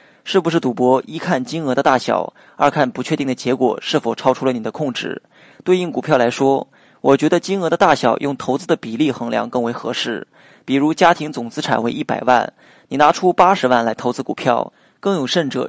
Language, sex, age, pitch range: Chinese, male, 20-39, 125-155 Hz